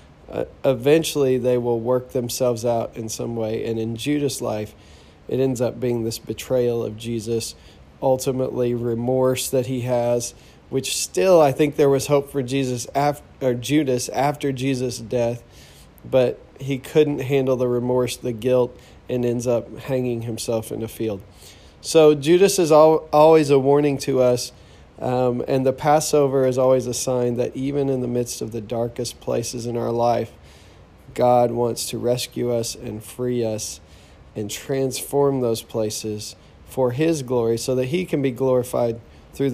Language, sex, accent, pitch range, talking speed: English, male, American, 115-135 Hz, 160 wpm